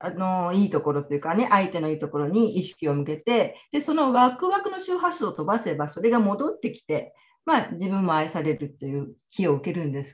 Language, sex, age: Japanese, female, 50-69